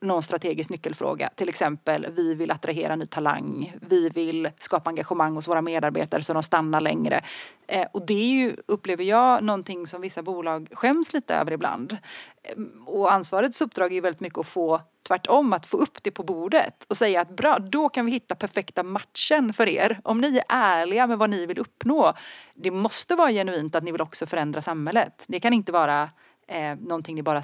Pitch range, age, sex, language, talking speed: 165-225 Hz, 30-49, female, Swedish, 200 wpm